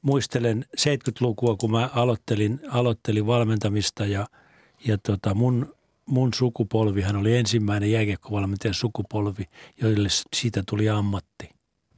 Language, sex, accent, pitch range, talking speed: Finnish, male, native, 105-125 Hz, 105 wpm